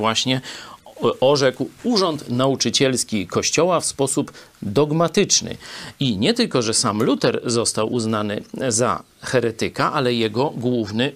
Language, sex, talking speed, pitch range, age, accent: Polish, male, 115 wpm, 110-135 Hz, 40-59, native